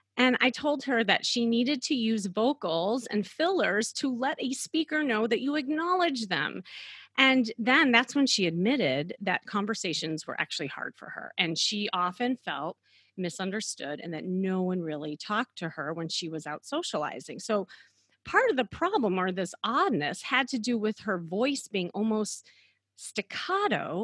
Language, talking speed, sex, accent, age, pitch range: English, 170 wpm, female, American, 30-49, 175-255 Hz